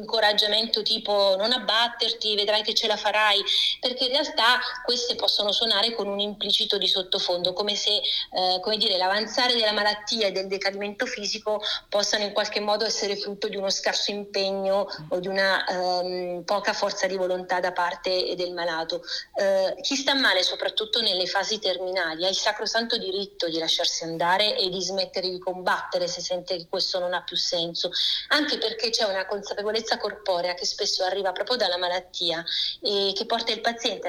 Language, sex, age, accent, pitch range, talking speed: Italian, female, 30-49, native, 185-225 Hz, 175 wpm